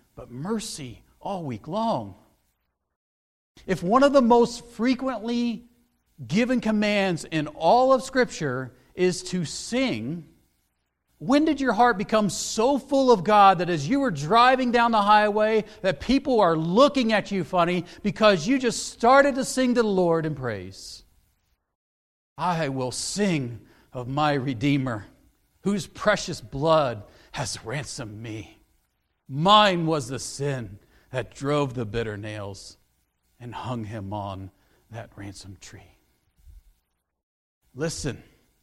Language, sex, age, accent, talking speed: English, male, 50-69, American, 130 wpm